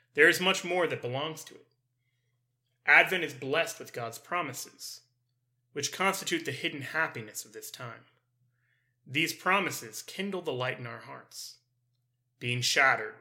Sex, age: male, 30-49